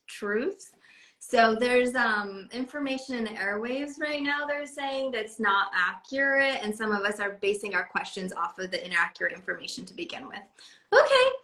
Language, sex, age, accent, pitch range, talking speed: English, female, 20-39, American, 205-265 Hz, 170 wpm